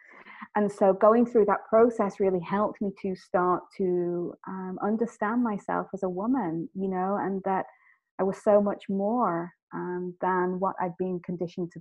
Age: 30-49